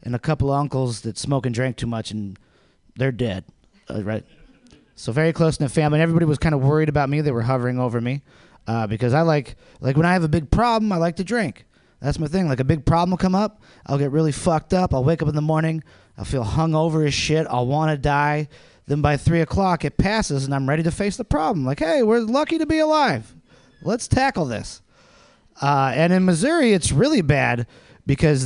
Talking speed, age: 230 wpm, 30-49